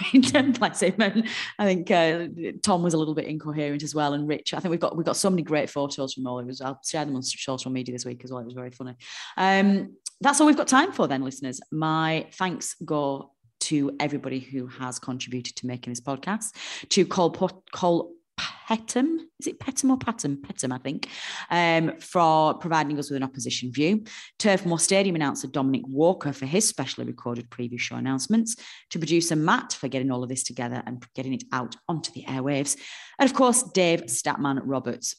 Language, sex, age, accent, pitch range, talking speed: English, female, 30-49, British, 125-175 Hz, 200 wpm